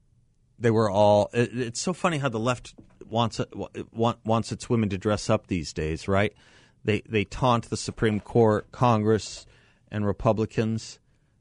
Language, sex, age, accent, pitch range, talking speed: English, male, 40-59, American, 100-120 Hz, 160 wpm